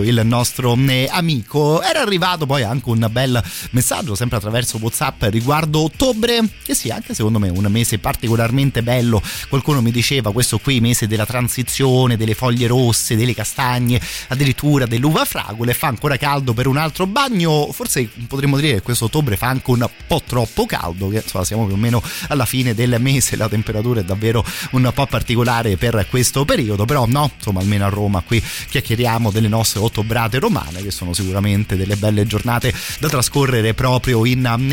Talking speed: 175 wpm